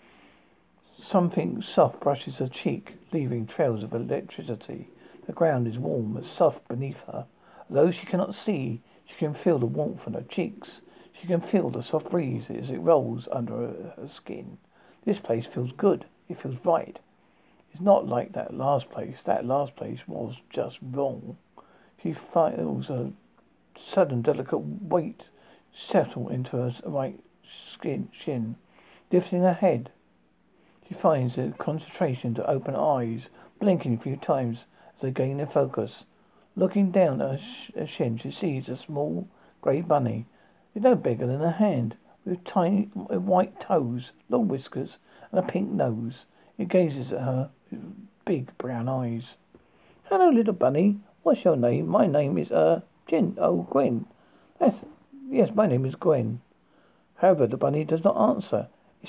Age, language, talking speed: 60-79, English, 160 wpm